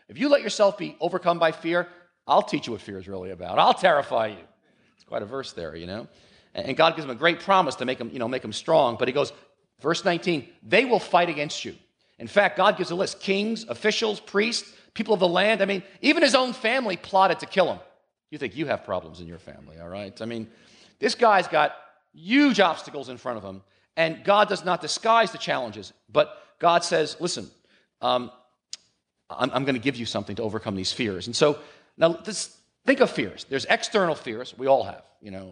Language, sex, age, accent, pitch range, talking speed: English, male, 40-59, American, 115-185 Hz, 220 wpm